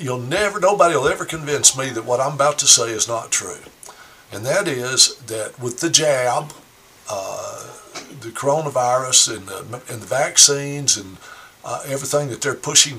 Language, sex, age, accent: English, male, 60-79, American